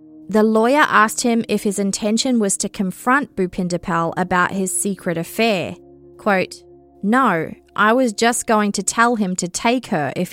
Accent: Australian